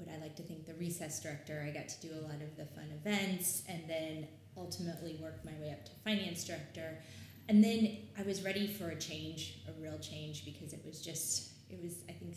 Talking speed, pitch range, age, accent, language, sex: 225 wpm, 145-170 Hz, 20-39, American, English, female